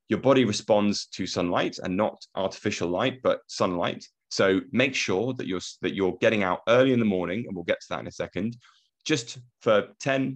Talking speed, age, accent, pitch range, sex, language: 205 wpm, 30-49, British, 90-125 Hz, male, English